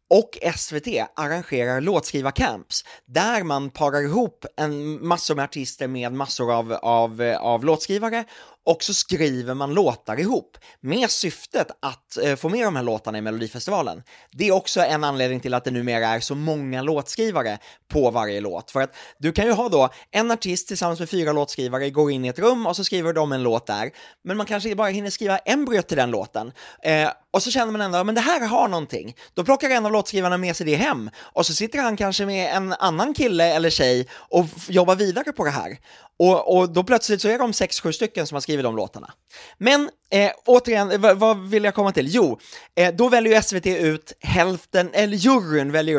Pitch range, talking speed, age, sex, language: 140-205 Hz, 200 wpm, 20-39, male, English